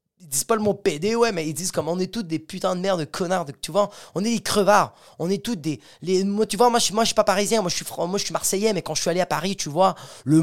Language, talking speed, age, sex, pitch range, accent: French, 330 wpm, 30-49, male, 165-225 Hz, French